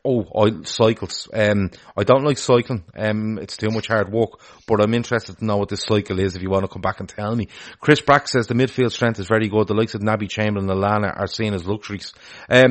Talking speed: 250 wpm